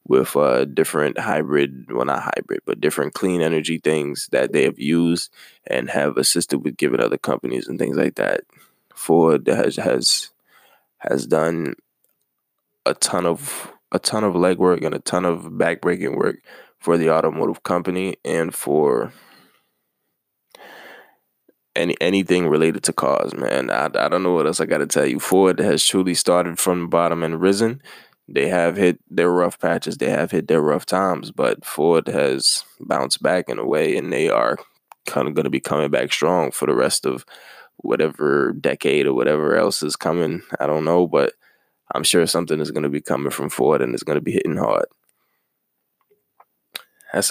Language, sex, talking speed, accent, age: English, male, 180 wpm, American, 10-29